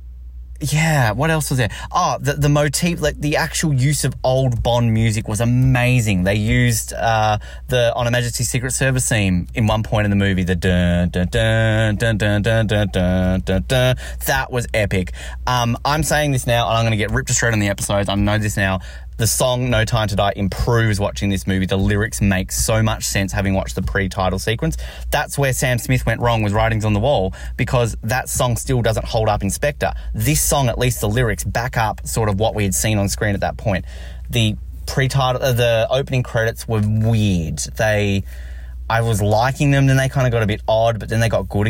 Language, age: English, 20-39